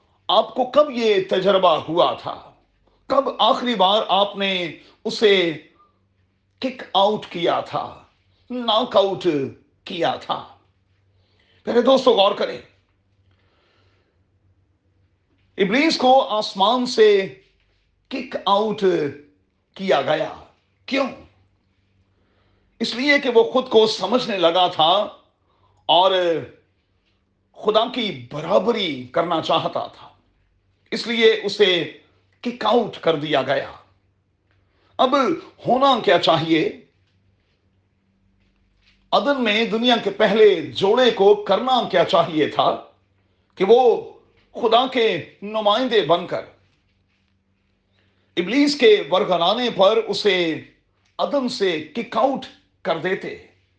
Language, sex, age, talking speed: Urdu, male, 40-59, 100 wpm